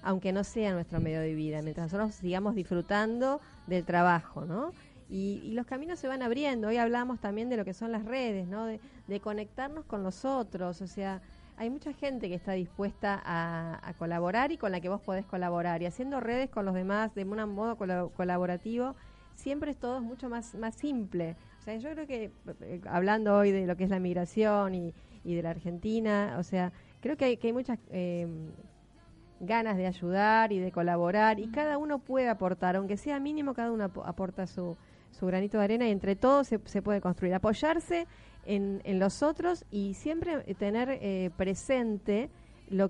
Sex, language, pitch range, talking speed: female, Spanish, 180-230 Hz, 200 wpm